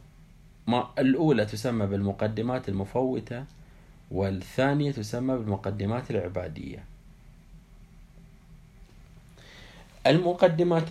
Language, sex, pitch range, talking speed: Arabic, male, 100-135 Hz, 55 wpm